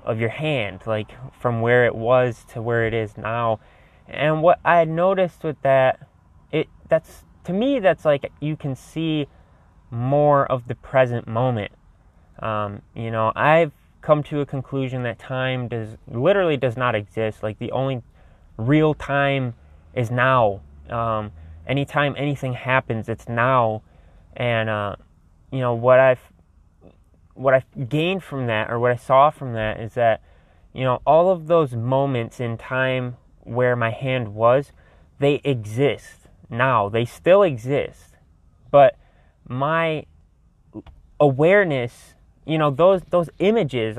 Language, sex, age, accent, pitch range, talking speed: English, male, 20-39, American, 110-140 Hz, 145 wpm